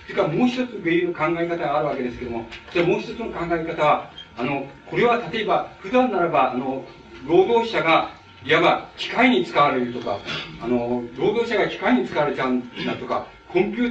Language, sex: Japanese, male